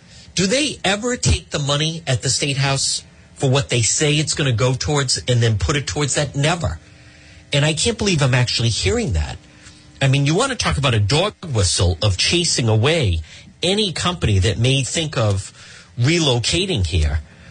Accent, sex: American, male